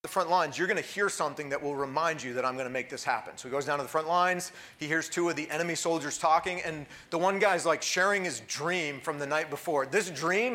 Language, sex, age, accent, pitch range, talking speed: English, male, 40-59, American, 145-210 Hz, 275 wpm